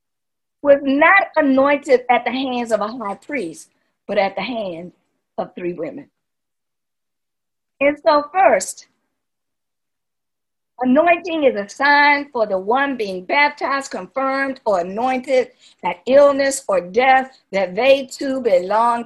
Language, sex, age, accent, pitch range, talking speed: English, female, 50-69, American, 225-295 Hz, 125 wpm